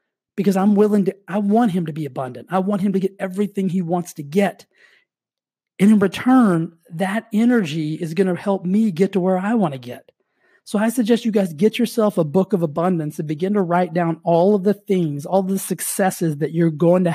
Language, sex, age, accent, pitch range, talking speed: English, male, 30-49, American, 165-205 Hz, 225 wpm